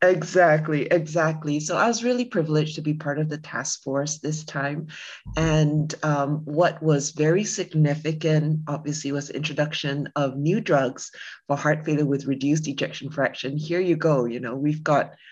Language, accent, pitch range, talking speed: English, American, 140-170 Hz, 165 wpm